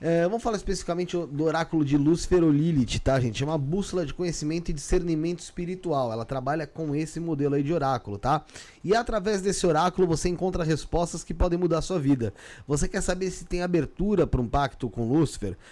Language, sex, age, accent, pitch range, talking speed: Portuguese, male, 20-39, Brazilian, 145-175 Hz, 200 wpm